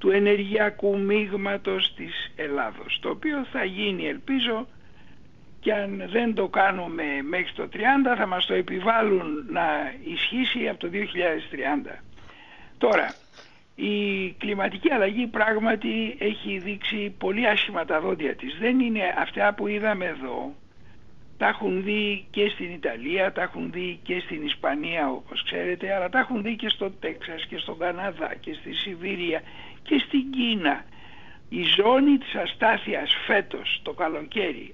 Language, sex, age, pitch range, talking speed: Greek, male, 60-79, 190-230 Hz, 140 wpm